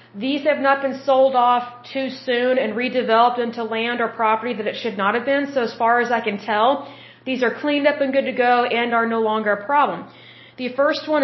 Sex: female